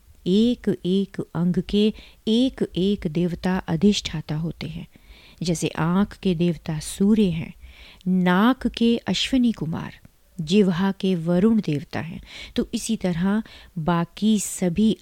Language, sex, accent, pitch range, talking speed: Hindi, female, native, 165-210 Hz, 120 wpm